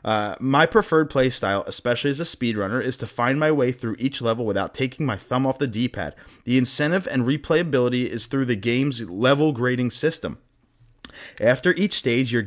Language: English